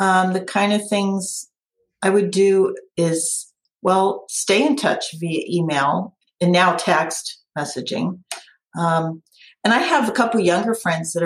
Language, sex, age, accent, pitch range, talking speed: English, female, 40-59, American, 175-225 Hz, 150 wpm